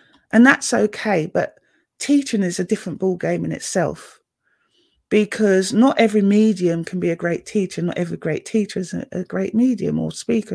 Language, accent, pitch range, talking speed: English, British, 175-225 Hz, 175 wpm